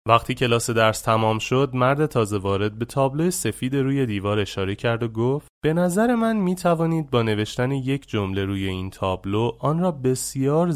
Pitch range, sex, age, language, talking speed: 105-140 Hz, male, 30-49, Persian, 180 wpm